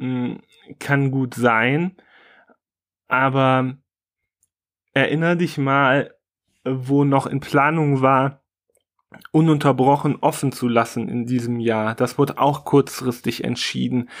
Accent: German